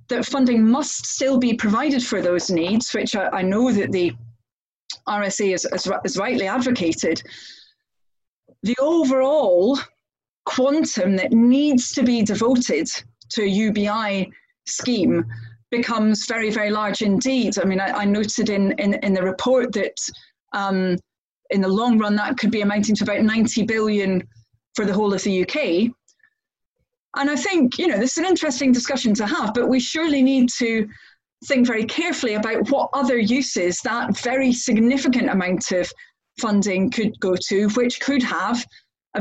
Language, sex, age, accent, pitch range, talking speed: English, female, 30-49, British, 200-255 Hz, 160 wpm